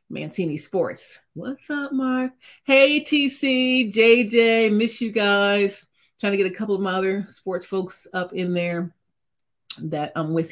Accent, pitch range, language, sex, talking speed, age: American, 180-255 Hz, English, female, 155 wpm, 40-59